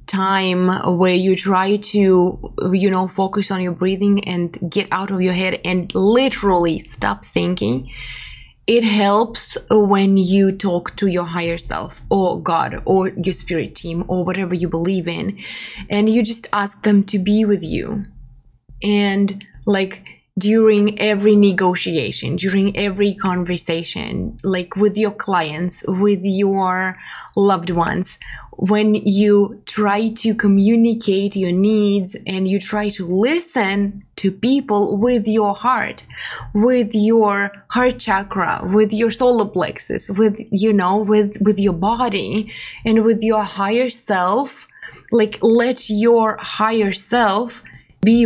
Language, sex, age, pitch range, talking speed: English, female, 20-39, 185-215 Hz, 135 wpm